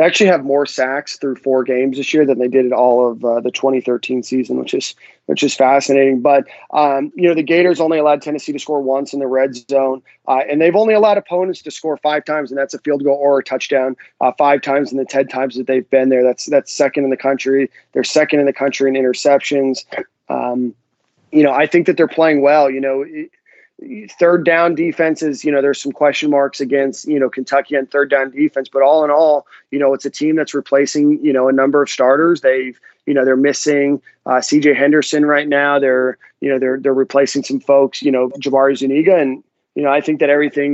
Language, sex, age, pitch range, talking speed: English, male, 30-49, 130-145 Hz, 235 wpm